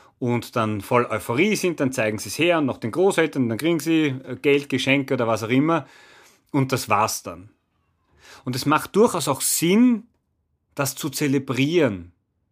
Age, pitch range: 30-49, 115-155 Hz